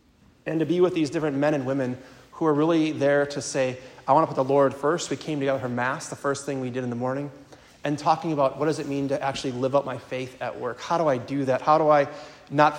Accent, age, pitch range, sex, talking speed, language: American, 30-49, 135-155 Hz, male, 275 wpm, English